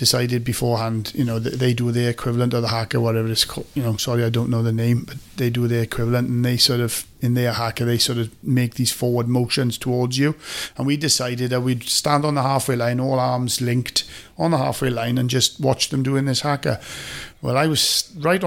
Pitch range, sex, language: 115-130 Hz, male, English